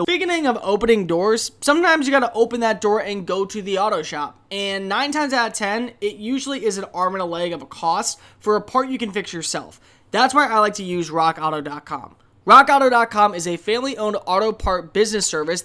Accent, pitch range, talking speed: American, 175-235 Hz, 220 wpm